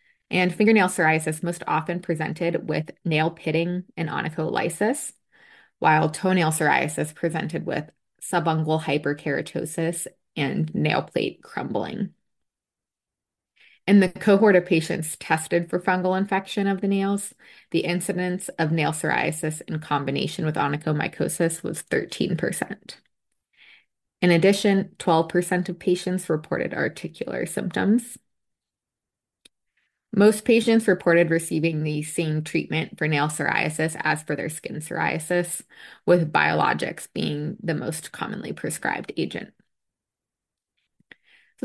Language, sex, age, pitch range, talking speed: English, female, 20-39, 160-195 Hz, 110 wpm